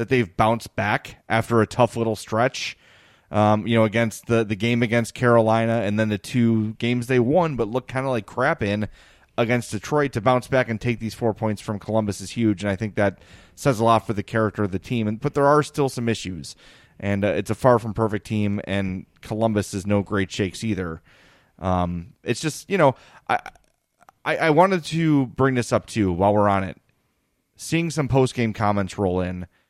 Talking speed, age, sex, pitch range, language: 210 wpm, 30-49, male, 105-135 Hz, English